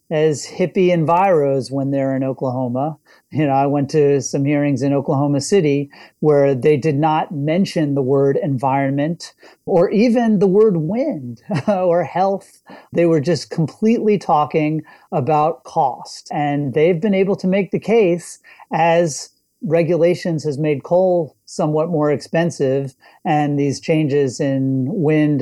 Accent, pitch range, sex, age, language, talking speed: American, 140-175 Hz, male, 40-59, English, 140 wpm